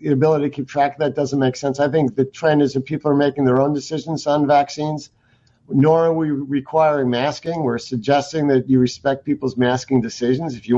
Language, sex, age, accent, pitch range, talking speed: English, male, 50-69, American, 125-150 Hz, 215 wpm